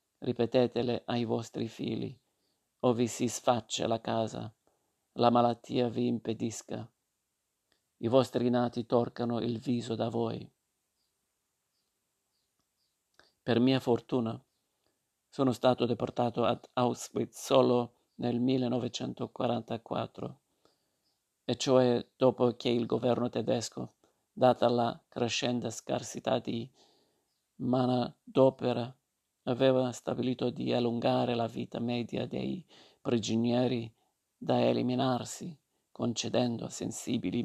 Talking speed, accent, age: 95 wpm, native, 50-69